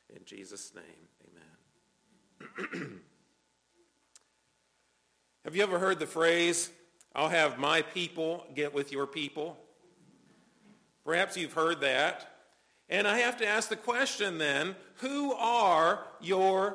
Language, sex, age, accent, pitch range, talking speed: English, male, 50-69, American, 155-210 Hz, 120 wpm